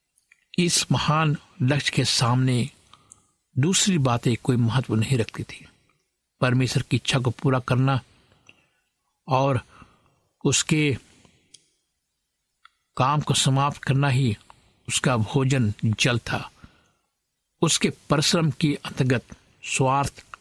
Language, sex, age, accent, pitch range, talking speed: Hindi, male, 60-79, native, 125-150 Hz, 100 wpm